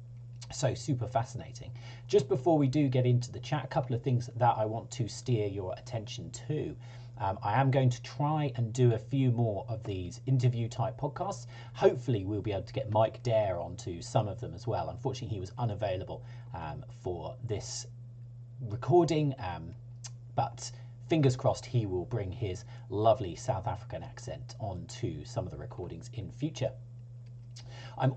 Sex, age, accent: male, 40-59, British